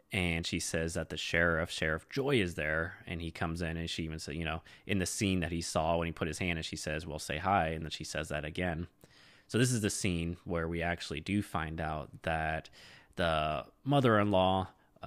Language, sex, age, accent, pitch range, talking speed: English, male, 20-39, American, 80-95 Hz, 225 wpm